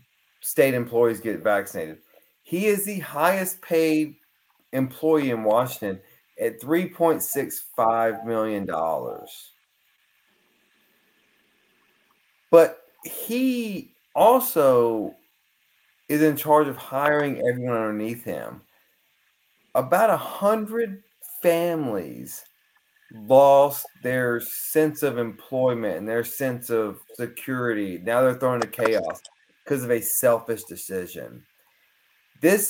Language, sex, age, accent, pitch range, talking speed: English, male, 30-49, American, 110-155 Hz, 95 wpm